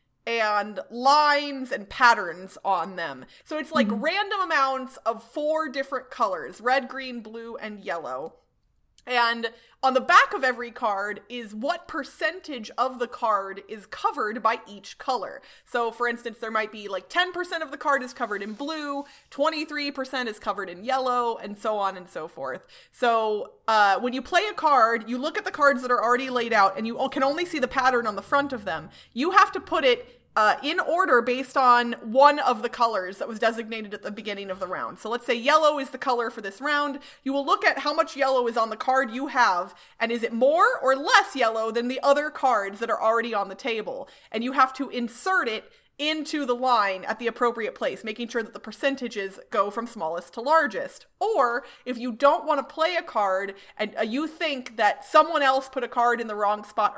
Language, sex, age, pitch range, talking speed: English, female, 20-39, 220-285 Hz, 210 wpm